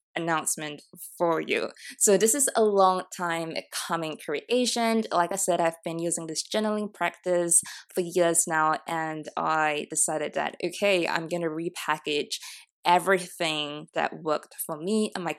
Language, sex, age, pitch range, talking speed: English, female, 20-39, 165-210 Hz, 150 wpm